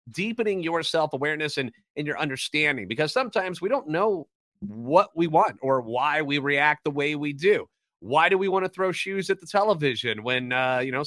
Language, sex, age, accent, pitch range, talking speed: English, male, 30-49, American, 140-185 Hz, 200 wpm